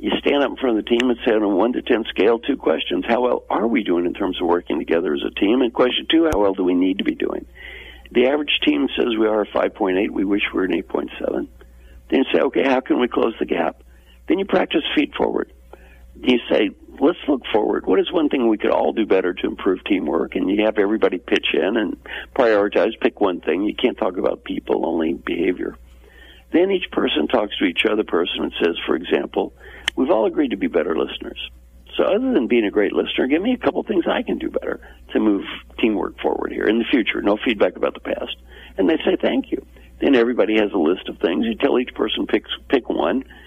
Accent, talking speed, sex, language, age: American, 235 wpm, male, English, 60-79